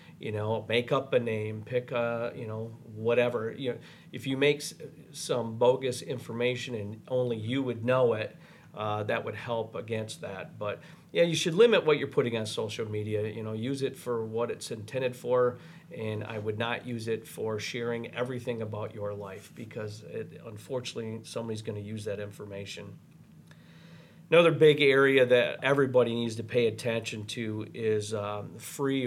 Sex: male